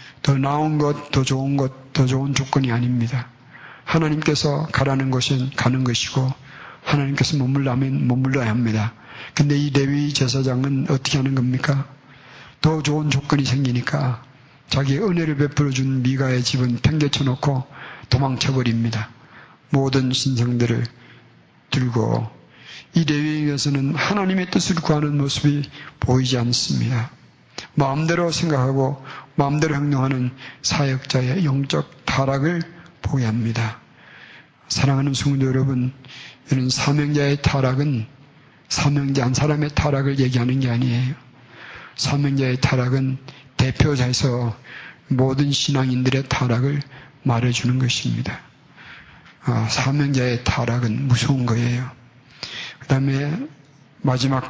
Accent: native